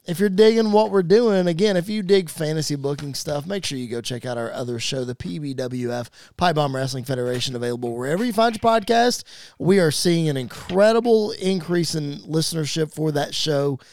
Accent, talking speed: American, 195 wpm